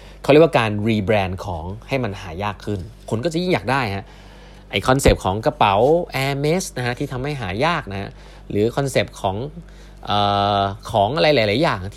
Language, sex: Thai, male